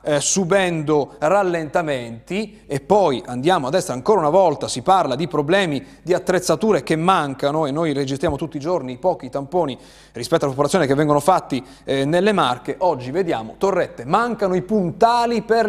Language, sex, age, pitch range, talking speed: Italian, male, 30-49, 140-190 Hz, 160 wpm